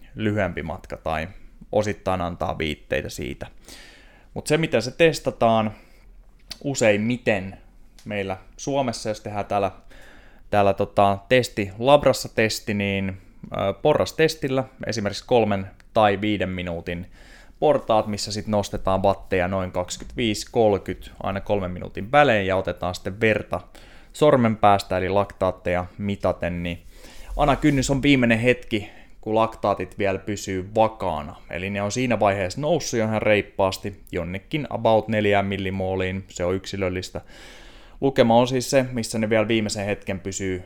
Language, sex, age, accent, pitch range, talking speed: Finnish, male, 20-39, native, 95-115 Hz, 130 wpm